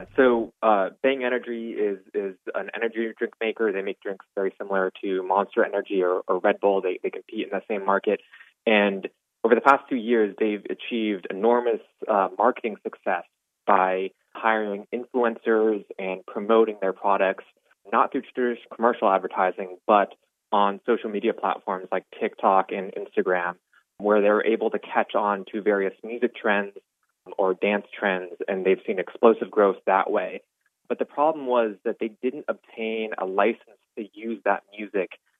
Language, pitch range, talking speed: English, 95-115 Hz, 165 wpm